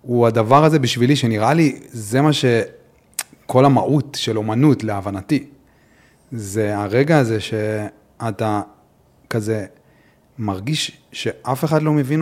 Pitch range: 110-130 Hz